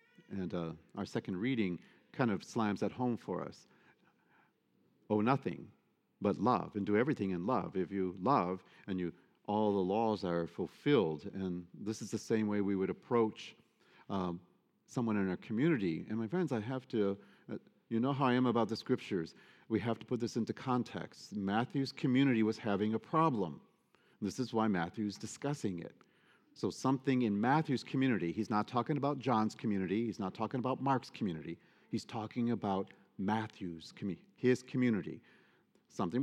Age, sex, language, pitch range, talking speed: 40-59, male, English, 100-125 Hz, 170 wpm